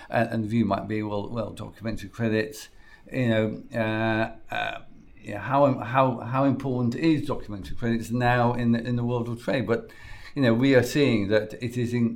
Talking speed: 195 wpm